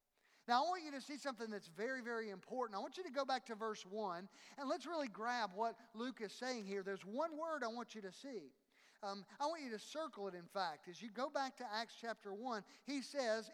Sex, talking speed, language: male, 250 wpm, English